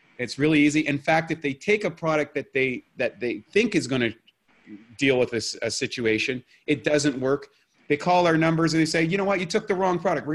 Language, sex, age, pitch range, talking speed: English, male, 30-49, 115-150 Hz, 250 wpm